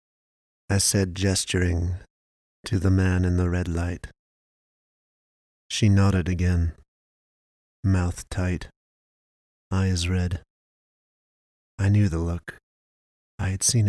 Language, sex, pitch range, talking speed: English, male, 85-105 Hz, 105 wpm